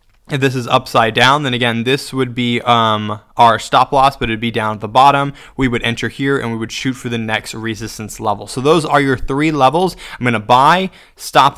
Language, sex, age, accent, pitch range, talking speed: English, male, 20-39, American, 115-135 Hz, 235 wpm